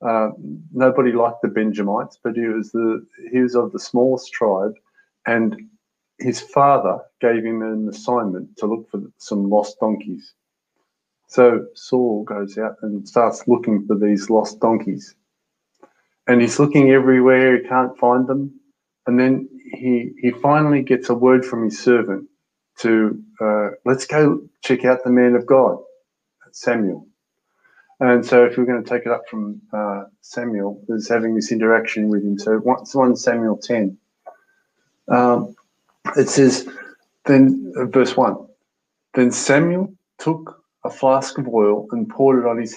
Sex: male